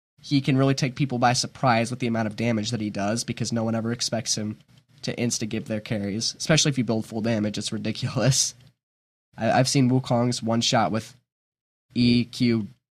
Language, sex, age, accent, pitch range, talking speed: English, male, 10-29, American, 115-135 Hz, 195 wpm